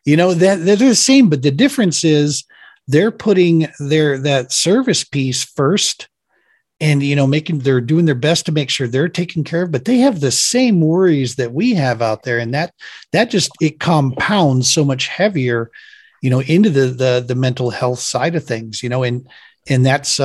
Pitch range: 125-155 Hz